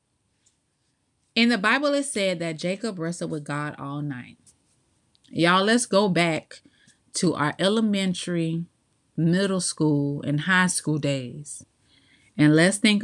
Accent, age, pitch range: American, 30-49, 155-215 Hz